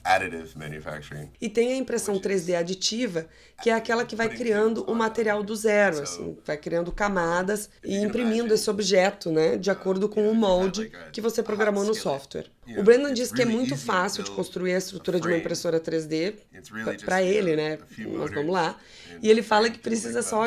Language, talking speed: Portuguese, 190 wpm